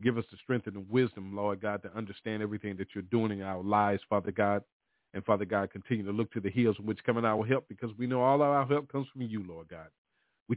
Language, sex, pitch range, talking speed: English, male, 105-130 Hz, 275 wpm